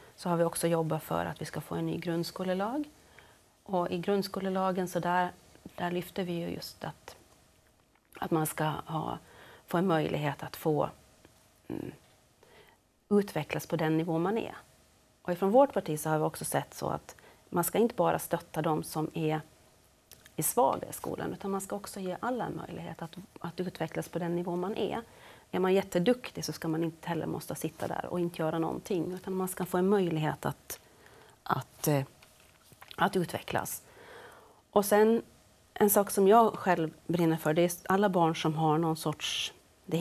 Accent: native